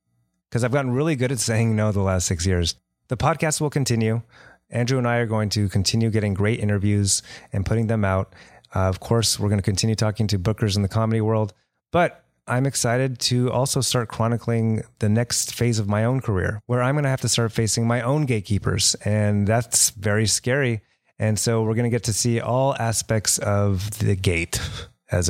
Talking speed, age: 205 wpm, 30-49